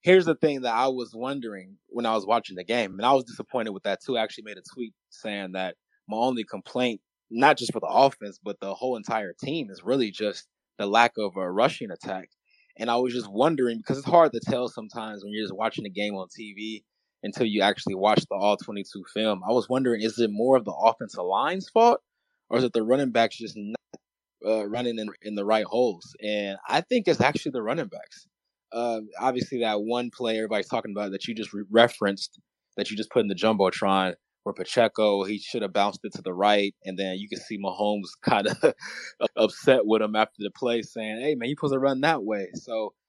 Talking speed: 225 wpm